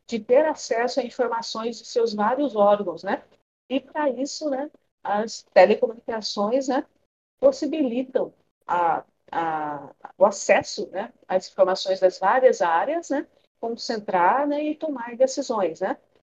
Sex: female